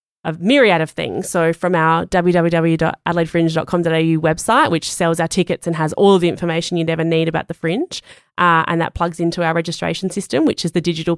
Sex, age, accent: female, 20-39, Australian